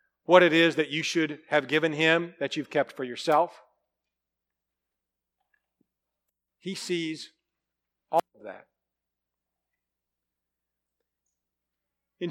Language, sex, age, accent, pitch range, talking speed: English, male, 50-69, American, 120-180 Hz, 95 wpm